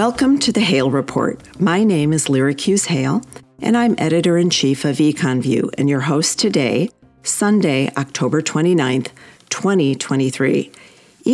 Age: 50-69